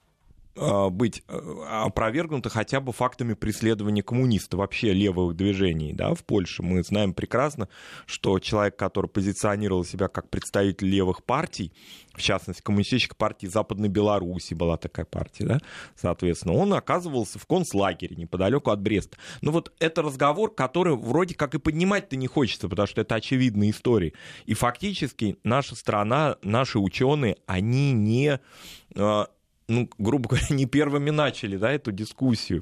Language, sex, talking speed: Russian, male, 140 wpm